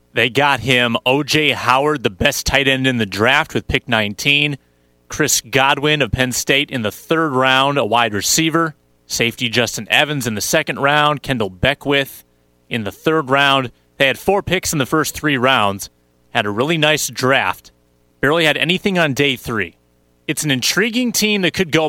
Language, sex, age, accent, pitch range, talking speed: English, male, 30-49, American, 110-150 Hz, 185 wpm